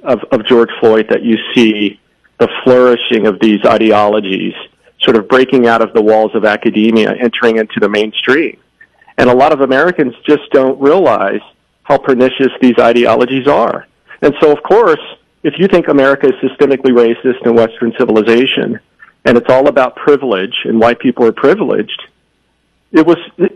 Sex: male